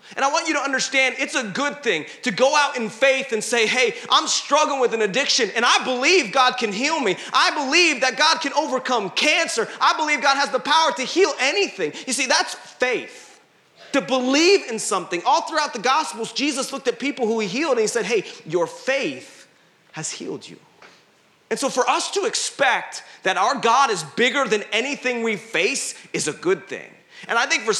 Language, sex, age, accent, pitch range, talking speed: English, male, 30-49, American, 225-300 Hz, 210 wpm